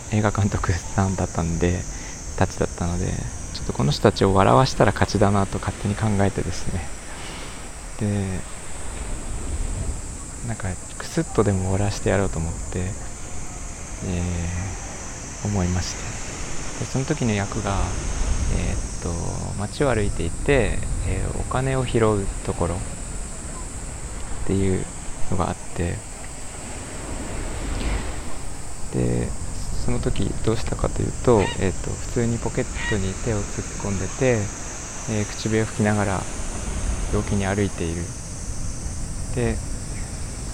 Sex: male